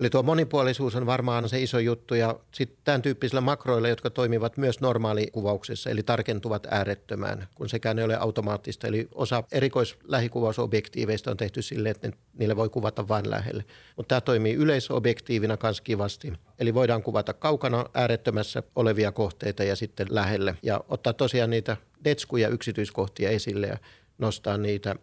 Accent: native